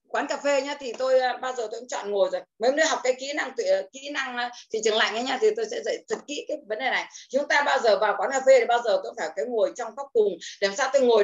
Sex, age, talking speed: female, 20-39, 320 wpm